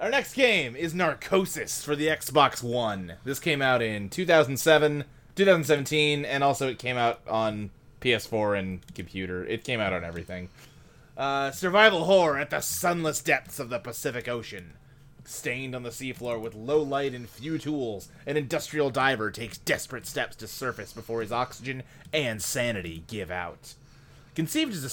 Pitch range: 115-155 Hz